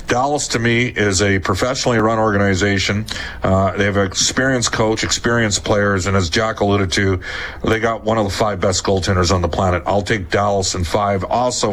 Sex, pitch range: male, 100-115 Hz